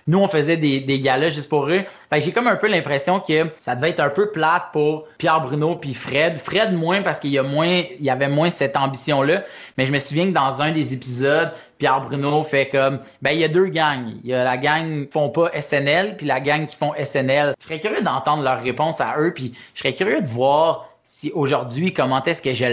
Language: French